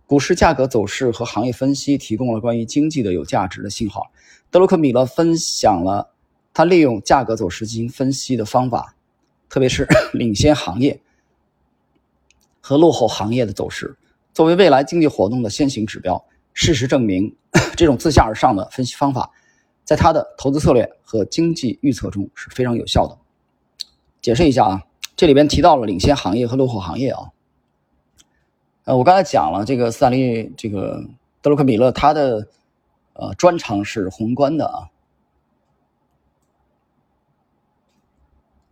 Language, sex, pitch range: Chinese, male, 100-140 Hz